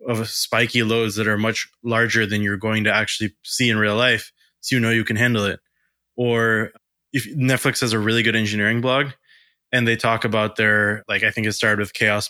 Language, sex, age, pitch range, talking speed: English, male, 20-39, 105-115 Hz, 215 wpm